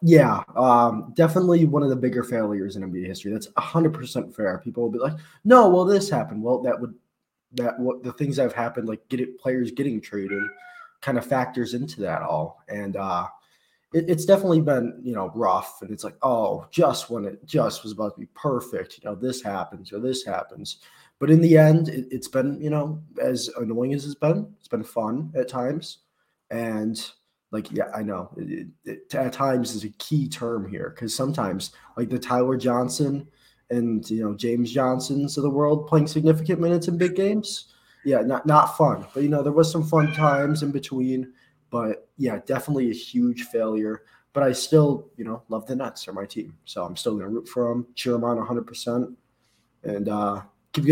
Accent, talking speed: American, 205 wpm